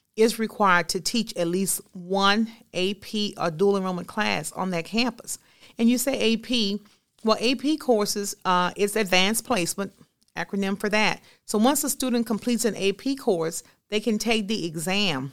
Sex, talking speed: female, 165 wpm